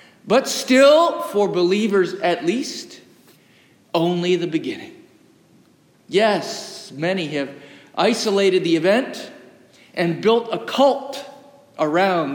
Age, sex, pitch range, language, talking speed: 50-69, male, 180-250 Hz, English, 95 wpm